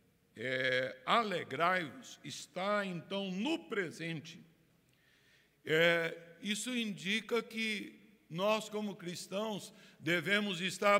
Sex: male